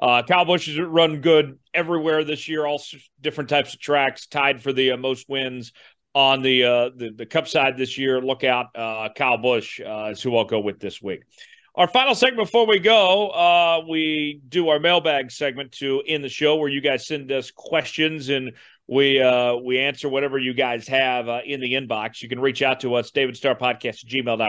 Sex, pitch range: male, 125-175 Hz